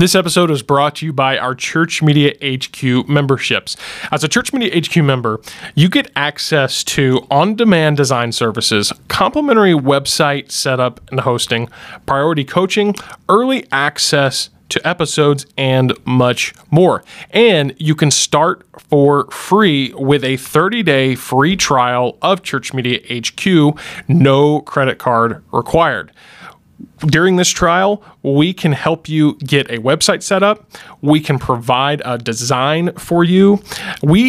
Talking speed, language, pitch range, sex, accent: 135 wpm, English, 130-165 Hz, male, American